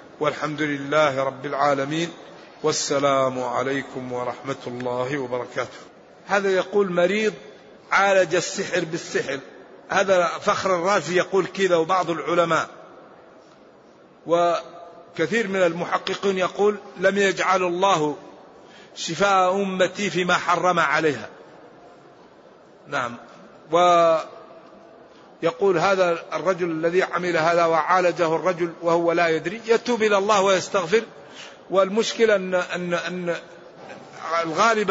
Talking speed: 95 wpm